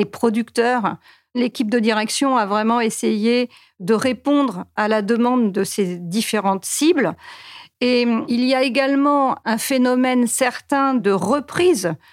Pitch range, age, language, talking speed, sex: 210-255 Hz, 50-69, French, 135 wpm, female